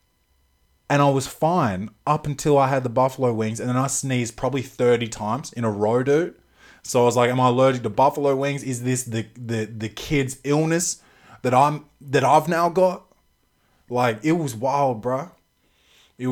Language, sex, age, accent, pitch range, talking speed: English, male, 20-39, Australian, 115-150 Hz, 190 wpm